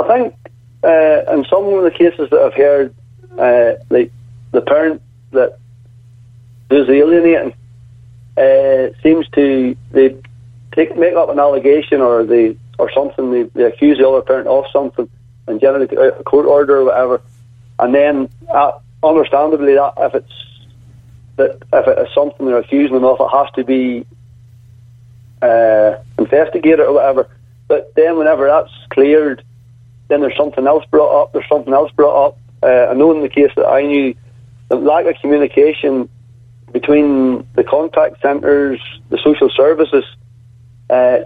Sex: male